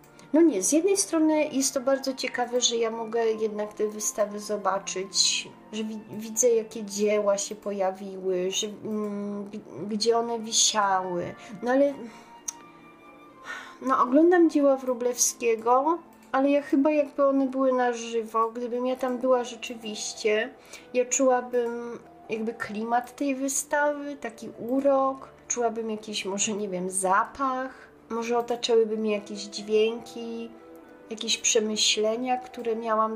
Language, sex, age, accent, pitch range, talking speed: Polish, female, 30-49, native, 220-270 Hz, 120 wpm